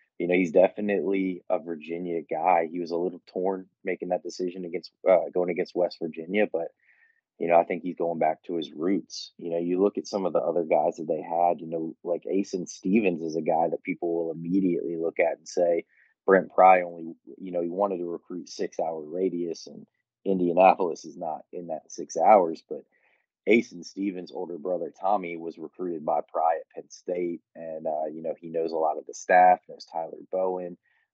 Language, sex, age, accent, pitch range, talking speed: English, male, 30-49, American, 85-95 Hz, 210 wpm